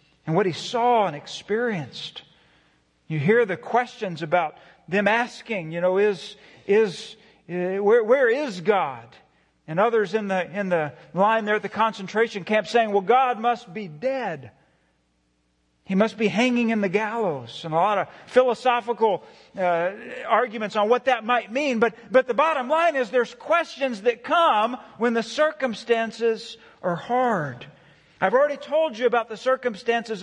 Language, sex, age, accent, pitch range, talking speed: English, male, 40-59, American, 165-240 Hz, 160 wpm